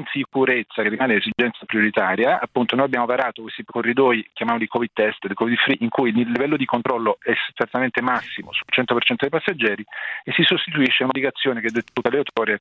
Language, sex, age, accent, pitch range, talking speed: Italian, male, 40-59, native, 115-140 Hz, 190 wpm